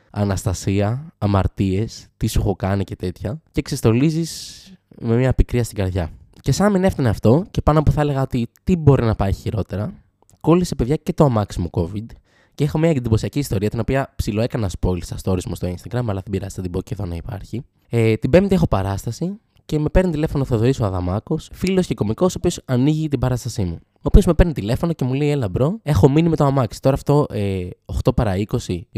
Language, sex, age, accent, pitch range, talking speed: Greek, male, 20-39, native, 100-145 Hz, 215 wpm